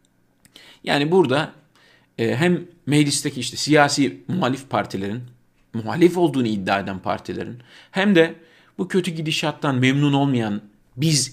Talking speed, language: 115 wpm, Turkish